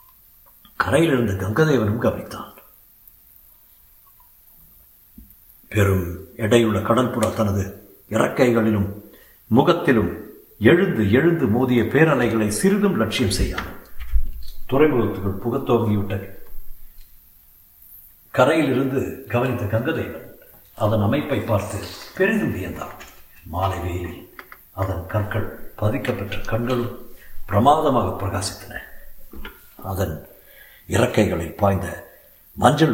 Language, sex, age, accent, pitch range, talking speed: Tamil, male, 60-79, native, 95-120 Hz, 70 wpm